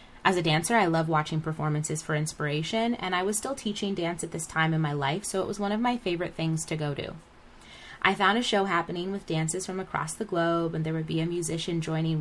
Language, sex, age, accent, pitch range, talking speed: English, female, 20-39, American, 170-235 Hz, 245 wpm